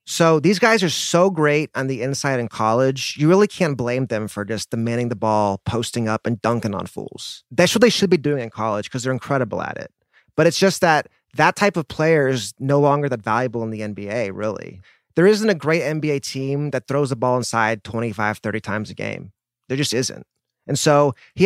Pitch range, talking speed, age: 120-155 Hz, 220 wpm, 30-49